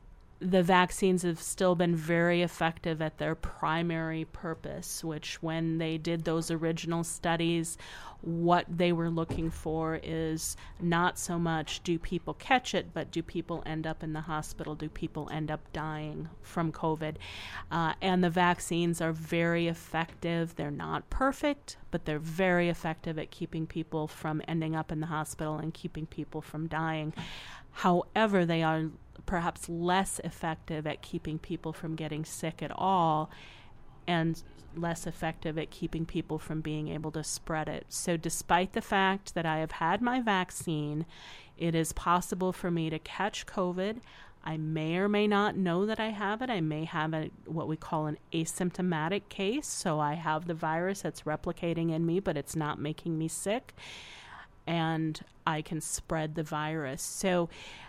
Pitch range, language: 155-175 Hz, English